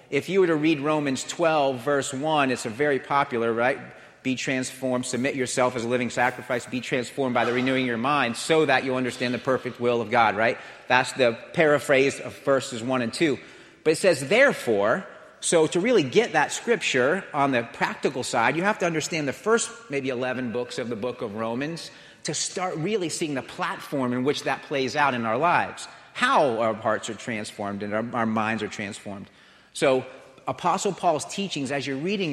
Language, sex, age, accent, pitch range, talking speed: English, male, 40-59, American, 120-155 Hz, 200 wpm